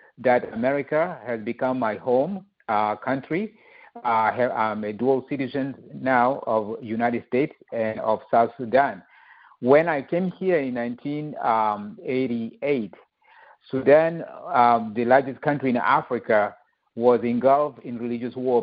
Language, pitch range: English, 115-145 Hz